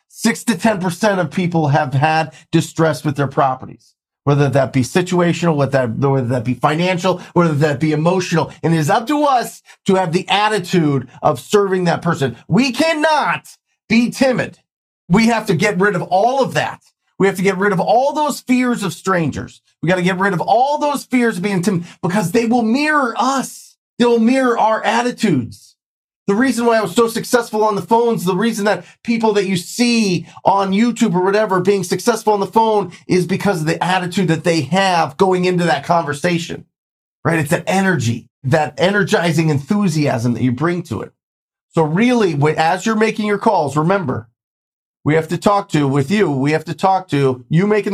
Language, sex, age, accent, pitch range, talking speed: English, male, 30-49, American, 155-215 Hz, 195 wpm